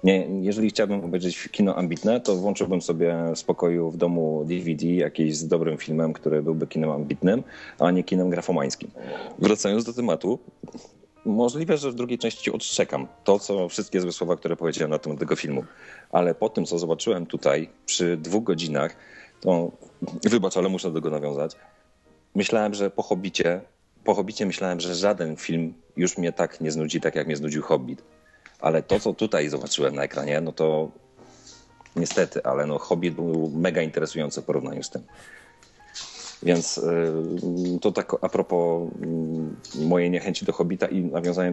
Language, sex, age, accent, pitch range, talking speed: Polish, male, 40-59, native, 80-95 Hz, 165 wpm